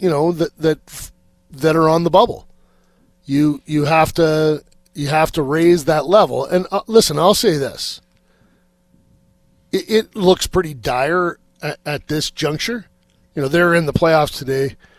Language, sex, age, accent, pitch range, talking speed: English, male, 40-59, American, 140-180 Hz, 160 wpm